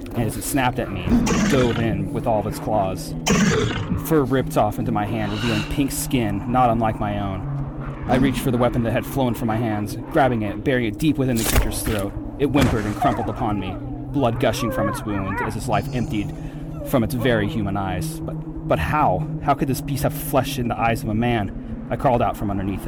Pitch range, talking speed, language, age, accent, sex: 100-135 Hz, 230 wpm, English, 30-49, American, male